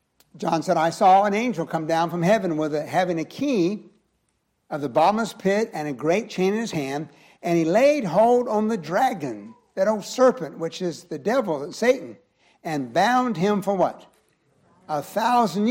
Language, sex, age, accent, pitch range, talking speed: English, male, 60-79, American, 160-210 Hz, 180 wpm